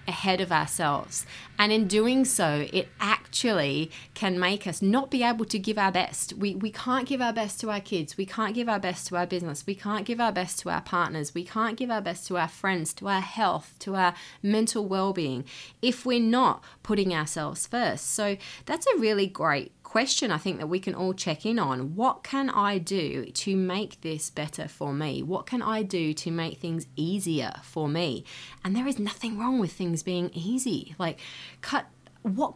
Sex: female